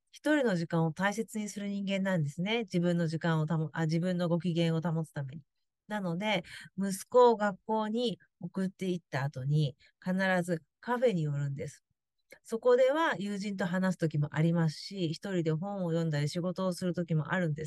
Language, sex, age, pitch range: Japanese, female, 40-59, 165-215 Hz